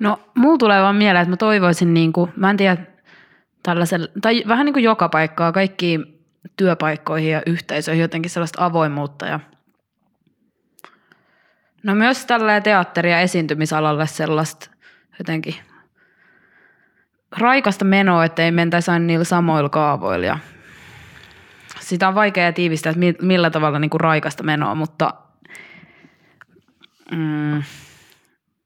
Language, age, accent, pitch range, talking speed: Finnish, 20-39, native, 160-195 Hz, 115 wpm